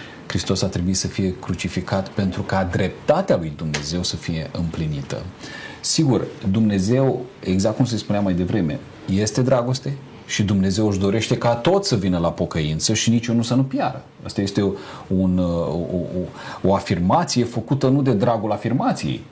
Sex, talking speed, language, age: male, 160 wpm, Romanian, 40-59